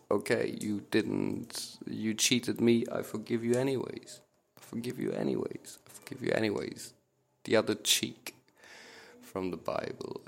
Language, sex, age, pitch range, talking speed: English, male, 30-49, 100-115 Hz, 140 wpm